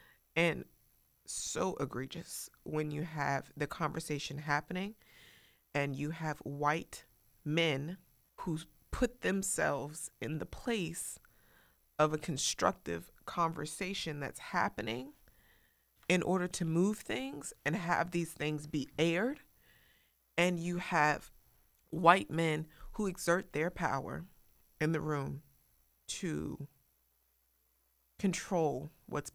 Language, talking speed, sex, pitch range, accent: English, 105 wpm, female, 140-175 Hz, American